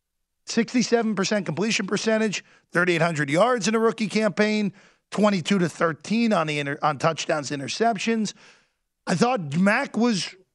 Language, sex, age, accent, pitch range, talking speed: English, male, 40-59, American, 145-230 Hz, 110 wpm